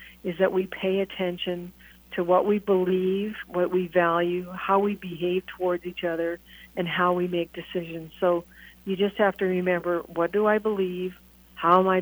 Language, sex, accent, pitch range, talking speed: English, female, American, 170-185 Hz, 180 wpm